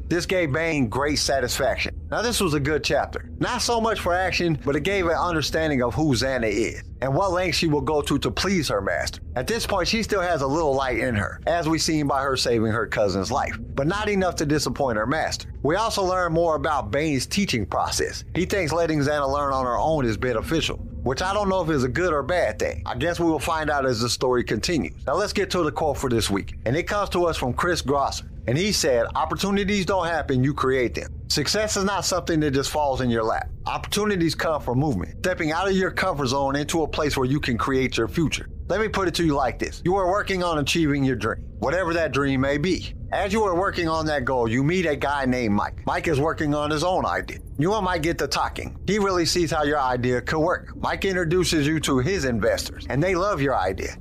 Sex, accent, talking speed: male, American, 245 wpm